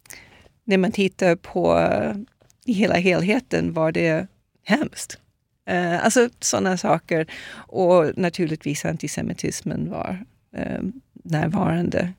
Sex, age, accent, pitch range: female, 30-49, native, 165-200 Hz